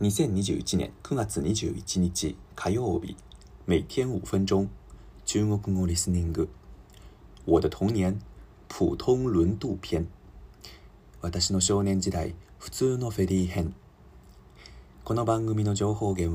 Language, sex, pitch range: Japanese, male, 90-105 Hz